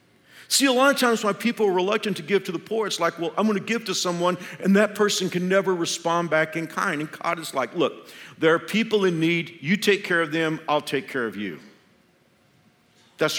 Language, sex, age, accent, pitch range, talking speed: English, male, 50-69, American, 115-195 Hz, 235 wpm